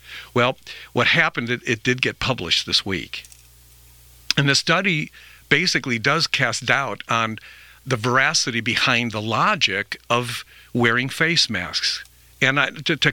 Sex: male